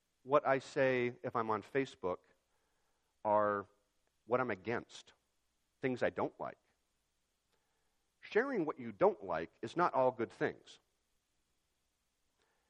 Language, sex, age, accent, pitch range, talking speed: English, male, 50-69, American, 80-135 Hz, 120 wpm